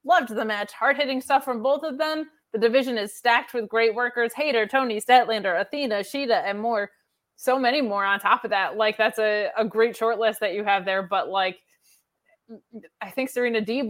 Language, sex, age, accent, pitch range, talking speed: English, female, 20-39, American, 205-250 Hz, 205 wpm